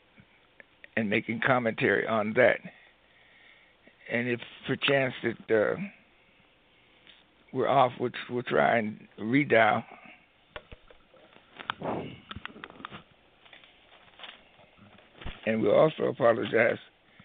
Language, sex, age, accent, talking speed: English, male, 60-79, American, 75 wpm